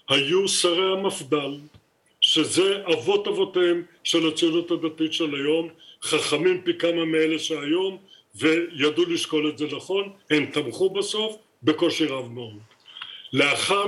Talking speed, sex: 120 wpm, male